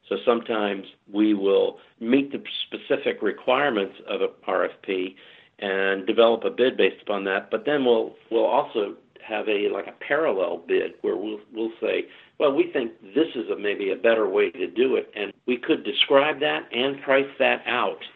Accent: American